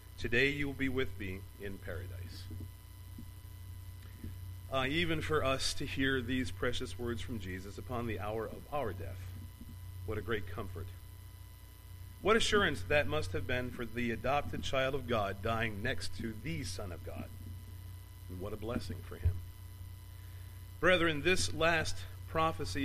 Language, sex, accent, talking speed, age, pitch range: English, male, American, 150 wpm, 40-59, 90-120 Hz